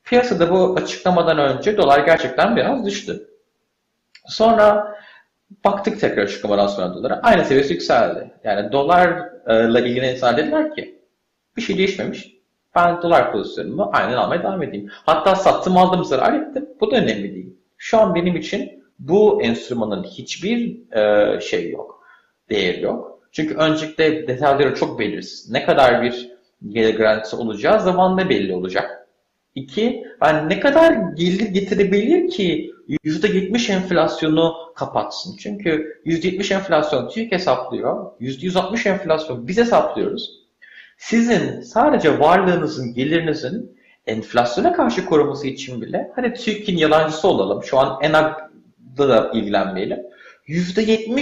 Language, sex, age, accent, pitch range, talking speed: Turkish, male, 40-59, native, 135-215 Hz, 120 wpm